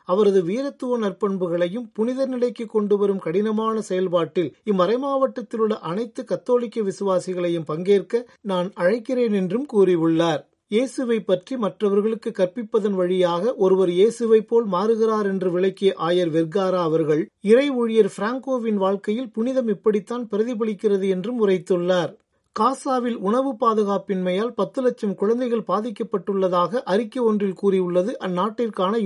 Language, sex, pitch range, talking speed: Tamil, male, 185-230 Hz, 110 wpm